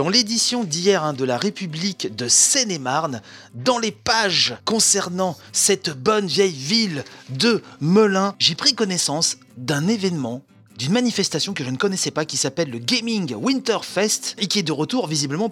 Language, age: French, 30-49